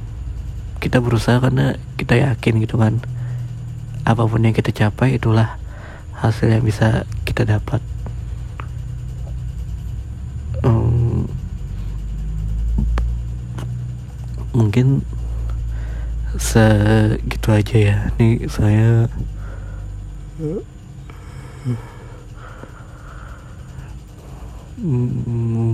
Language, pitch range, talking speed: Indonesian, 105-115 Hz, 60 wpm